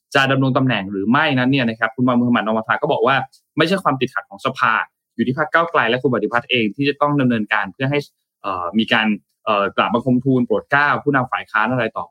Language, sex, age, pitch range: Thai, male, 20-39, 120-150 Hz